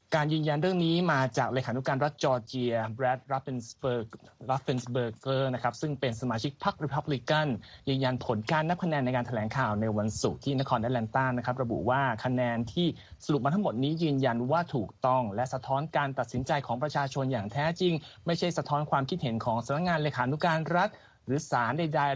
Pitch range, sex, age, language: 120-150 Hz, male, 20-39, Thai